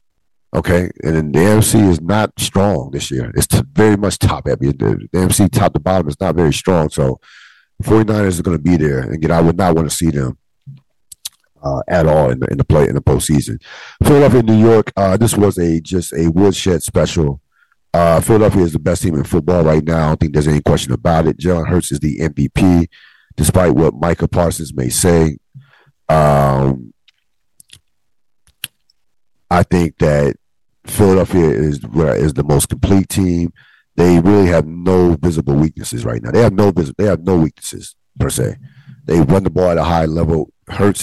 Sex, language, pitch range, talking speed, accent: male, English, 75-95 Hz, 195 wpm, American